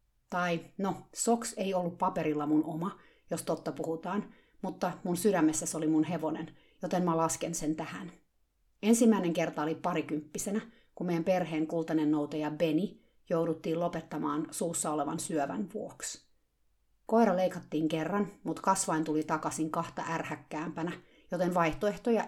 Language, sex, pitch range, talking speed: Finnish, female, 155-185 Hz, 135 wpm